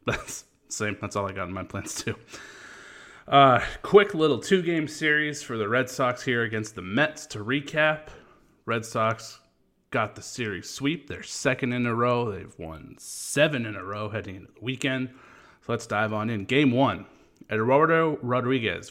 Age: 30-49